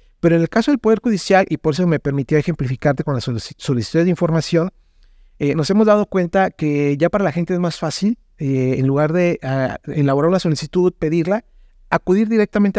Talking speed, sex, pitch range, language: 200 wpm, male, 135-190 Hz, Spanish